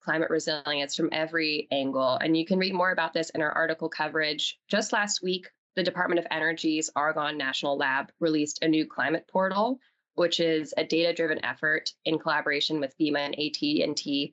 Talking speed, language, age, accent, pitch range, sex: 175 wpm, English, 10-29, American, 150-180 Hz, female